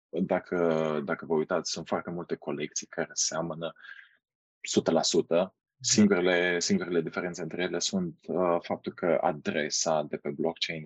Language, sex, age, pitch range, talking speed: Romanian, male, 20-39, 75-105 Hz, 135 wpm